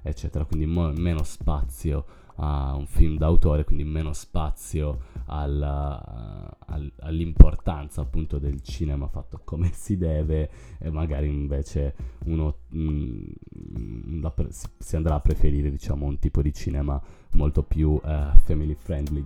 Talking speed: 130 wpm